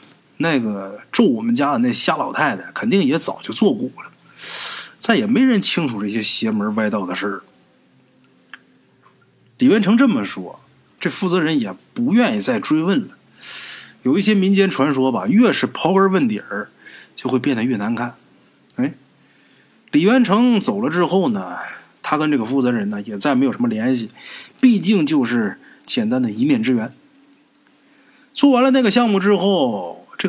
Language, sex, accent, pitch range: Chinese, male, native, 170-245 Hz